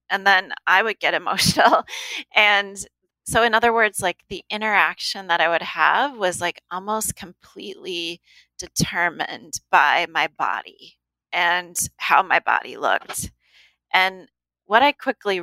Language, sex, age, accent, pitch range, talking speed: English, female, 30-49, American, 165-200 Hz, 135 wpm